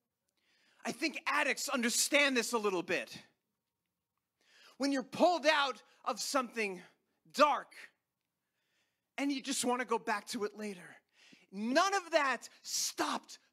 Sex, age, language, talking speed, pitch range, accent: male, 30-49, English, 130 wpm, 200-280 Hz, American